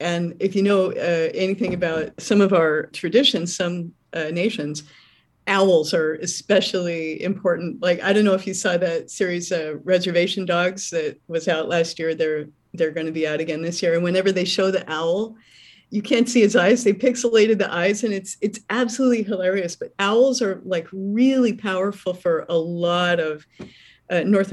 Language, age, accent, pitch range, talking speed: English, 40-59, American, 175-225 Hz, 190 wpm